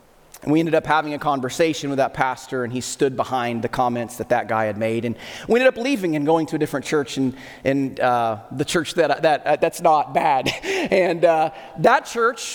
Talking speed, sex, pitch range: 220 wpm, male, 150-245 Hz